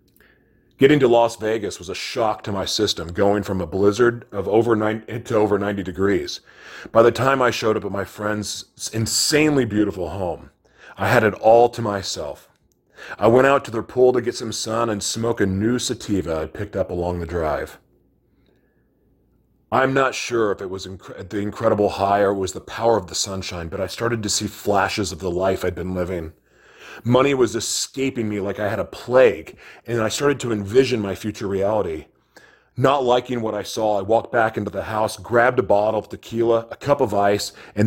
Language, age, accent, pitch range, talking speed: English, 30-49, American, 100-120 Hz, 210 wpm